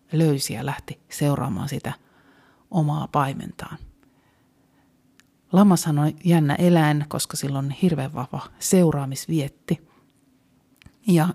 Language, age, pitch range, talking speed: Finnish, 30-49, 140-170 Hz, 95 wpm